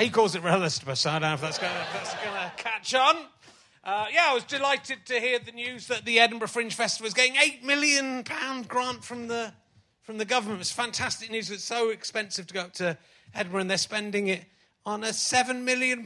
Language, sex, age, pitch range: English, male, 30-49, 175-240 Hz